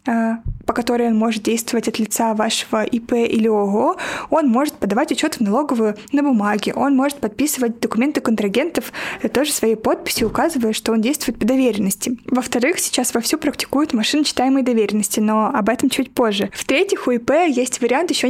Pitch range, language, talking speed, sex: 225-275 Hz, Russian, 165 wpm, female